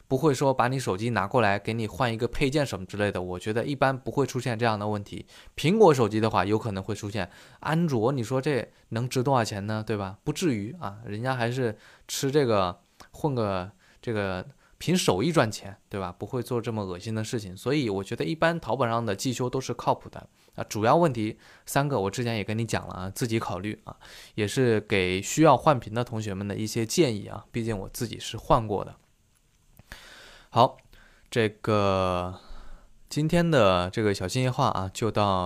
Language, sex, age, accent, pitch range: Chinese, male, 20-39, native, 100-130 Hz